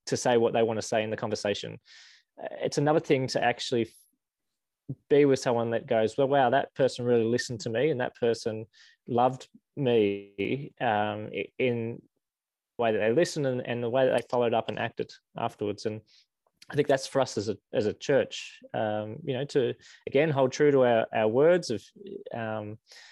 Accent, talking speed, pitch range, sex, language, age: Australian, 195 wpm, 110-140 Hz, male, English, 20-39